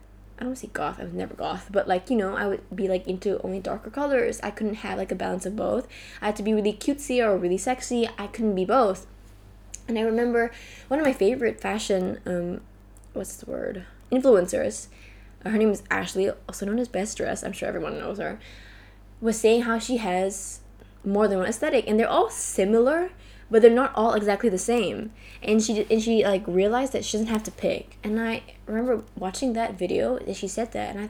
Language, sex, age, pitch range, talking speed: English, female, 10-29, 190-250 Hz, 215 wpm